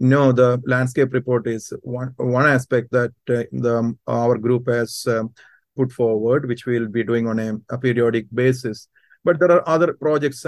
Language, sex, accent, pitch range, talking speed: English, male, Indian, 120-135 Hz, 180 wpm